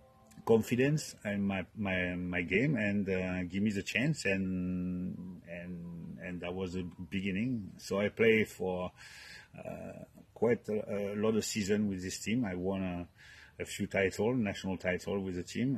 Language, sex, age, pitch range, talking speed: English, male, 30-49, 90-100 Hz, 165 wpm